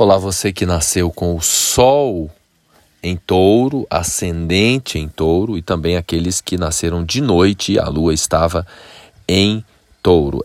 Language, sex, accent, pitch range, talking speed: Portuguese, male, Brazilian, 85-105 Hz, 140 wpm